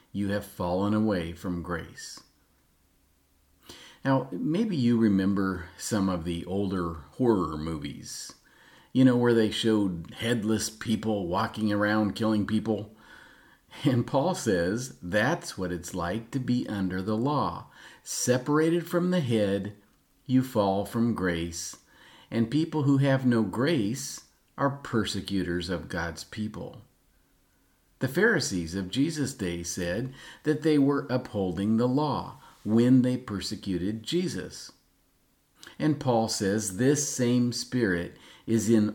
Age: 50-69